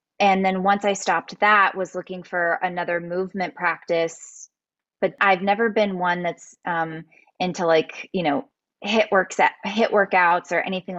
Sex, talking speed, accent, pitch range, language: female, 155 wpm, American, 175-210 Hz, English